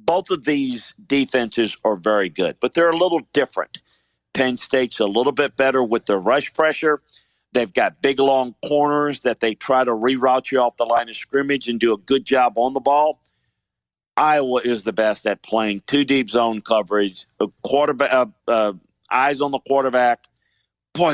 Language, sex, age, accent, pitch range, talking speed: English, male, 50-69, American, 110-140 Hz, 180 wpm